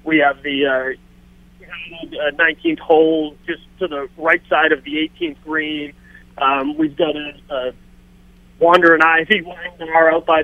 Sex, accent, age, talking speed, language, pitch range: male, American, 30-49, 155 wpm, English, 145-180 Hz